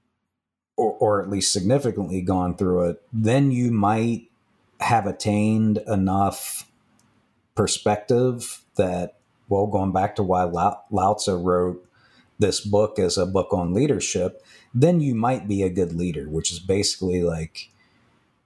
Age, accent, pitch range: 50-69, American, 90-110 Hz